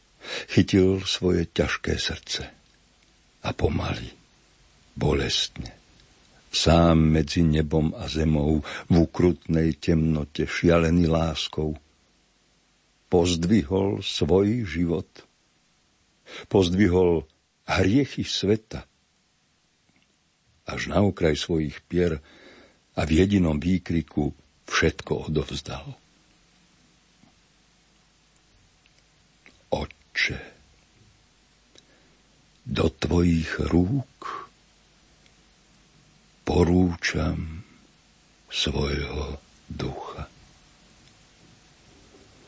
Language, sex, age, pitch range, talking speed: Slovak, male, 60-79, 75-90 Hz, 55 wpm